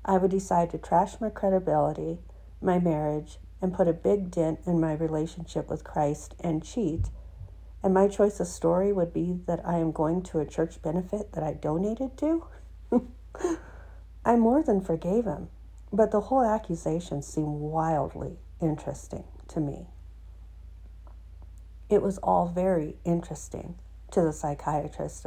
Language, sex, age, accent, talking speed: English, female, 50-69, American, 145 wpm